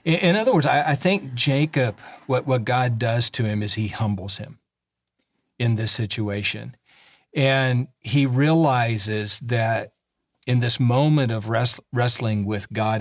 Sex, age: male, 50-69